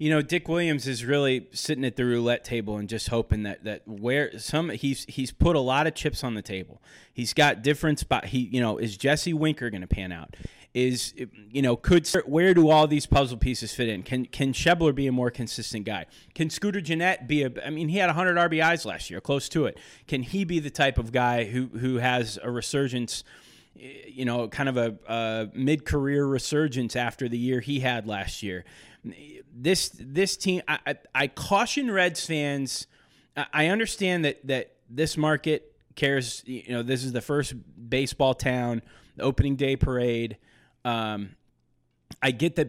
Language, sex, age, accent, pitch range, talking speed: English, male, 30-49, American, 120-150 Hz, 195 wpm